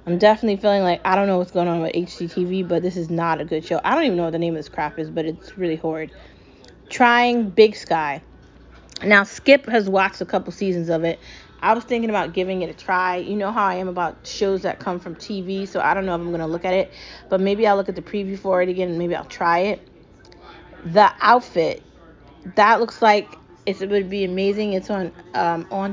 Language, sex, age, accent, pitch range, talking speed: English, female, 20-39, American, 175-210 Hz, 235 wpm